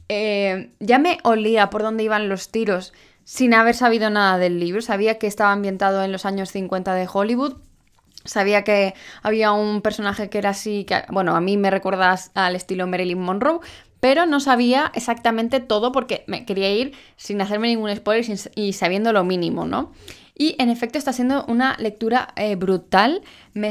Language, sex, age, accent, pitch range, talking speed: Spanish, female, 10-29, Spanish, 195-240 Hz, 180 wpm